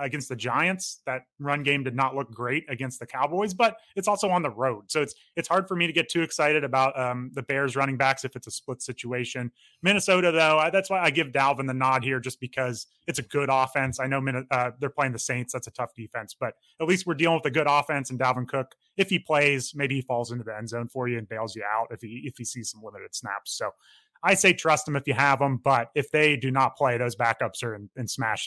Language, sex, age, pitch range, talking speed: English, male, 30-49, 125-160 Hz, 265 wpm